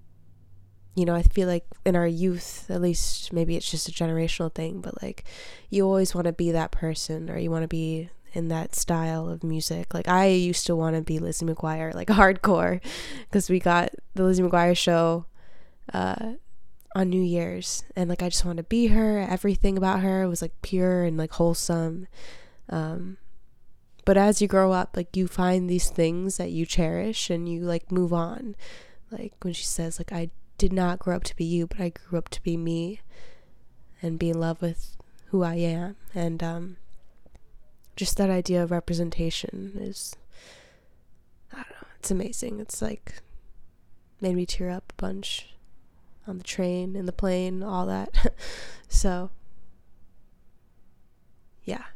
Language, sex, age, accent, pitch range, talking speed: English, female, 20-39, American, 165-190 Hz, 175 wpm